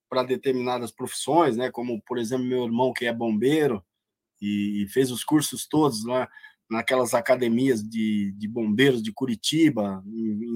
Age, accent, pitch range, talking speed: 20-39, Brazilian, 120-165 Hz, 155 wpm